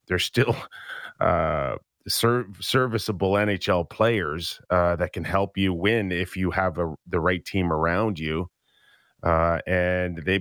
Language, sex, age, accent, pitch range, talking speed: English, male, 30-49, American, 80-95 Hz, 145 wpm